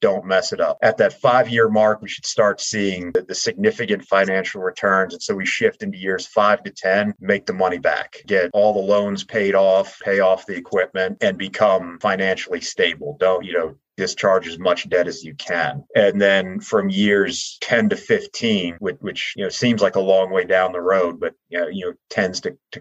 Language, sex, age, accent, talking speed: English, male, 30-49, American, 215 wpm